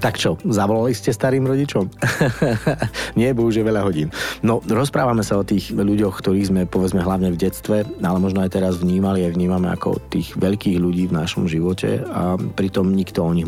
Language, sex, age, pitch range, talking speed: Slovak, male, 40-59, 95-105 Hz, 185 wpm